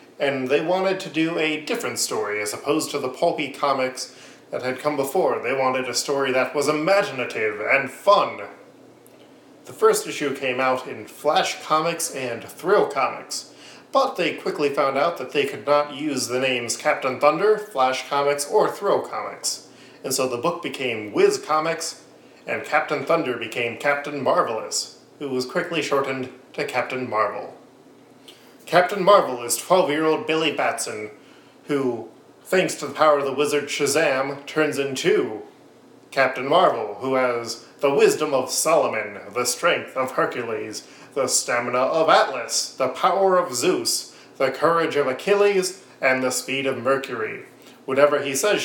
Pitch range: 130-170 Hz